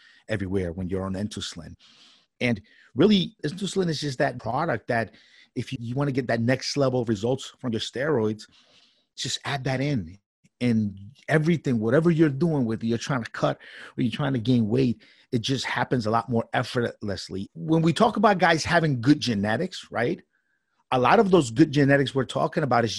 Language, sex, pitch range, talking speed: English, male, 115-150 Hz, 190 wpm